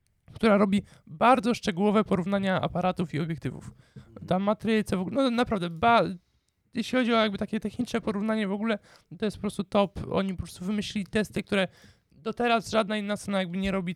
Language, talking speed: Polish, 185 wpm